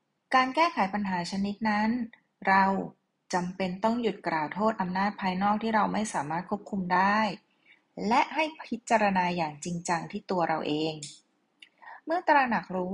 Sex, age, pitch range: female, 20-39, 180-230 Hz